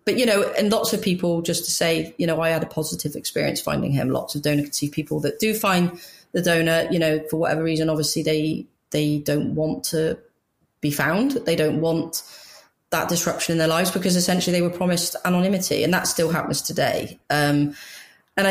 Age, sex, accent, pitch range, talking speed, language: 30-49, female, British, 155-180 Hz, 205 wpm, English